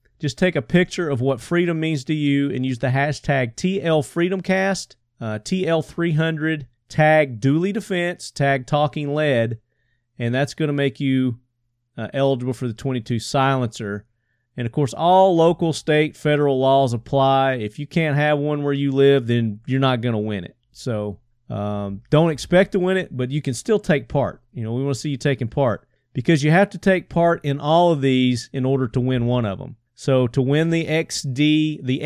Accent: American